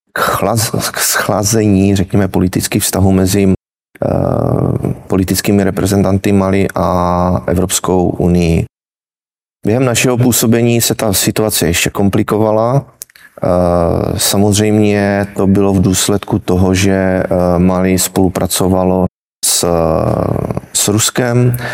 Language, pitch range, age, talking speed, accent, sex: Czech, 90-105 Hz, 30-49, 95 wpm, native, male